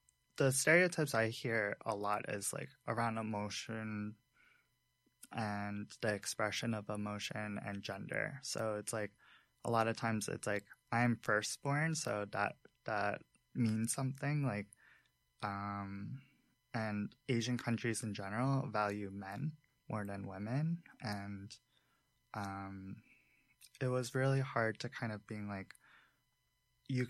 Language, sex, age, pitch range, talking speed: English, male, 20-39, 105-125 Hz, 125 wpm